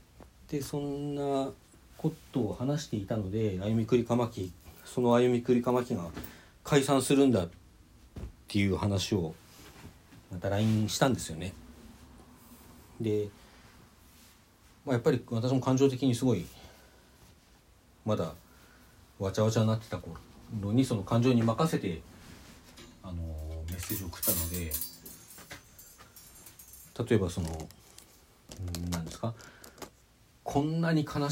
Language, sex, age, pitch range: Japanese, male, 40-59, 85-120 Hz